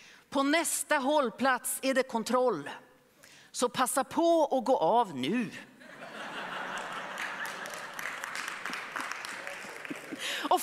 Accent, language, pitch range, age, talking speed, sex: native, Swedish, 215-290 Hz, 40-59, 80 wpm, female